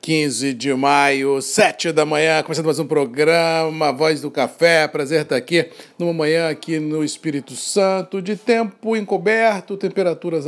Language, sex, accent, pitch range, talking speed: Portuguese, male, Brazilian, 150-170 Hz, 150 wpm